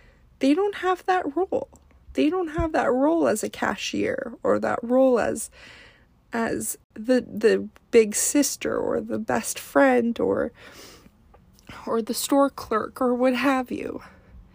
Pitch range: 225-270 Hz